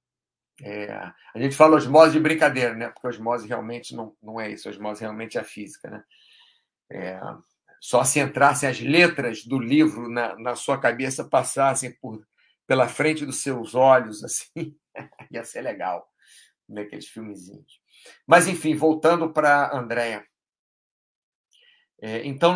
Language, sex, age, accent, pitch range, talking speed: Portuguese, male, 50-69, Brazilian, 120-150 Hz, 145 wpm